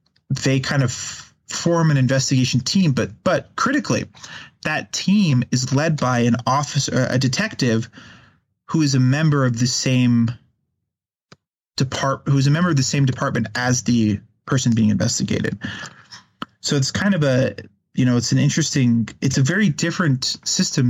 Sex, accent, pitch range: male, American, 120-150 Hz